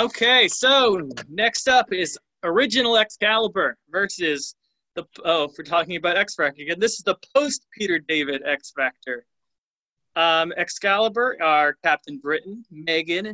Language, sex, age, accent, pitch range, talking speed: English, male, 20-39, American, 150-205 Hz, 125 wpm